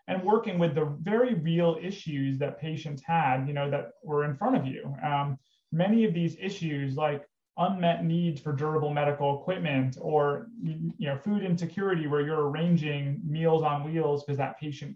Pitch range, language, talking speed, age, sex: 145-175 Hz, English, 175 wpm, 30-49, male